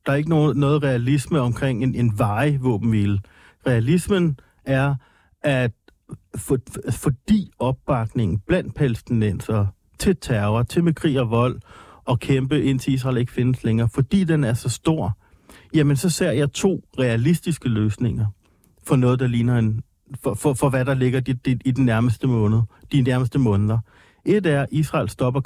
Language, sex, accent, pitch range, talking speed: Danish, male, native, 110-150 Hz, 165 wpm